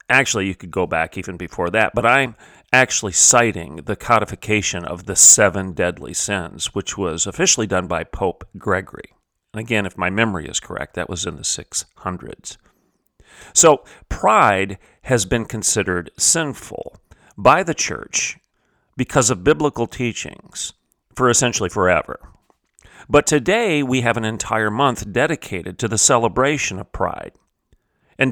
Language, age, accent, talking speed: English, 40-59, American, 140 wpm